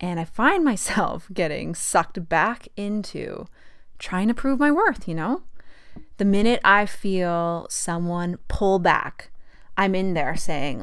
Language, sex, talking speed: English, female, 145 wpm